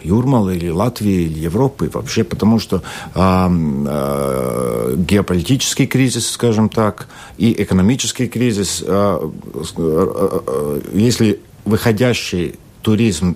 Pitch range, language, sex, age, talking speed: 95-115 Hz, Russian, male, 60-79, 110 wpm